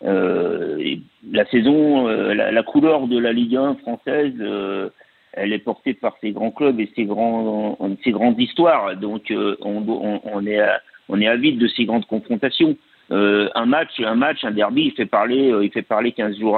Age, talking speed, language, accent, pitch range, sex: 50-69, 210 wpm, French, French, 120-150 Hz, male